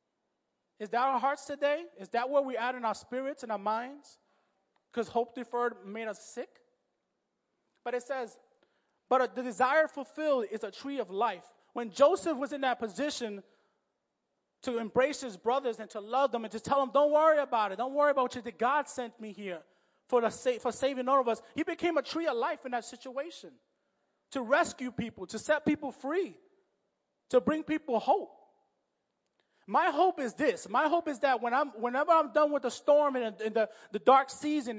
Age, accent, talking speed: 30-49, American, 200 wpm